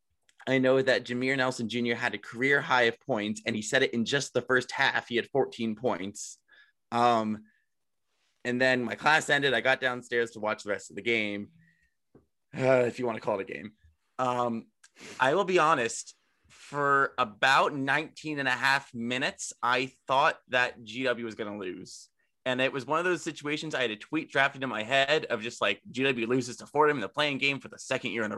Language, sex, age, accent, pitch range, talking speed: English, male, 20-39, American, 110-135 Hz, 215 wpm